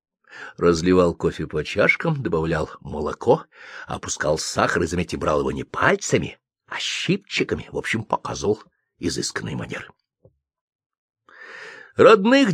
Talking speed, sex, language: 105 wpm, male, Russian